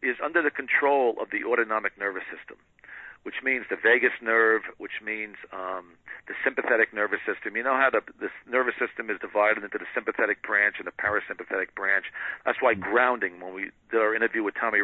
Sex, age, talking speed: male, 50-69, 195 wpm